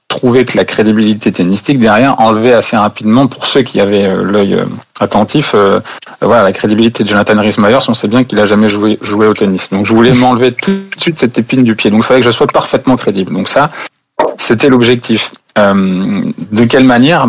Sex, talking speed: male, 210 wpm